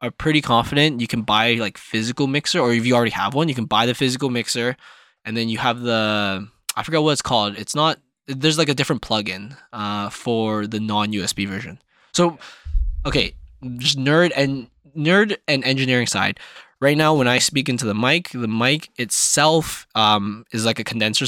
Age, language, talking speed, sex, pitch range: 10-29, English, 190 wpm, male, 105-125 Hz